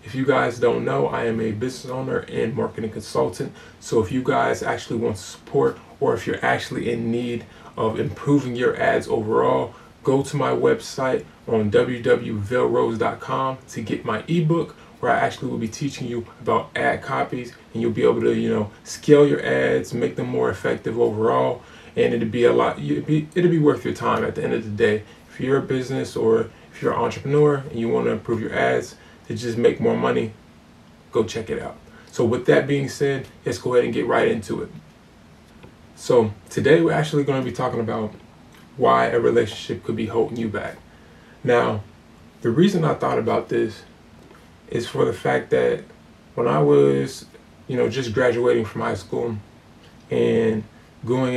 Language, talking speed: English, 190 wpm